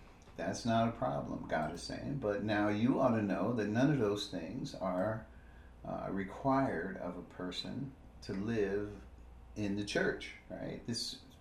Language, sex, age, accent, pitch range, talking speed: English, male, 50-69, American, 90-115 Hz, 165 wpm